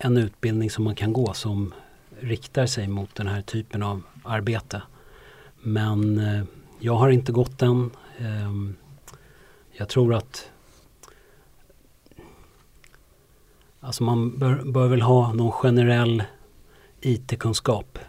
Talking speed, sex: 105 wpm, male